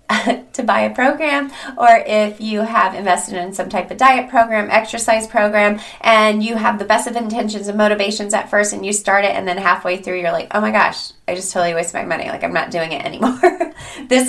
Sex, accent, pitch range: female, American, 175-220 Hz